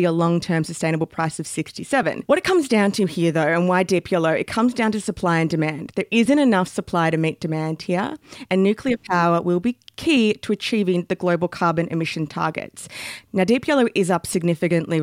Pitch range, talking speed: 165-205 Hz, 205 wpm